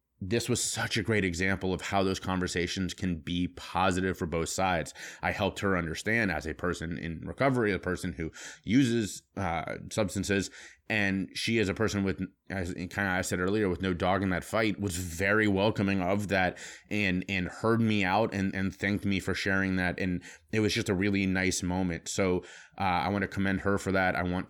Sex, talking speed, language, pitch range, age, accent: male, 205 wpm, English, 90-105 Hz, 30-49, American